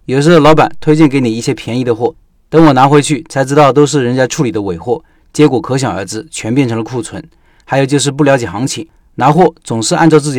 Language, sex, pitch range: Chinese, male, 120-155 Hz